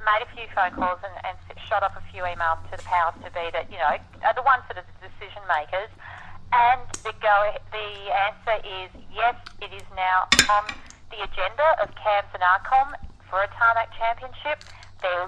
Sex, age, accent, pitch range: female, 40-59, Australian, 170-220 Hz